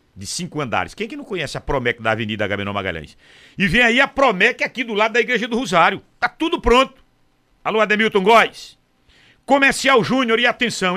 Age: 60-79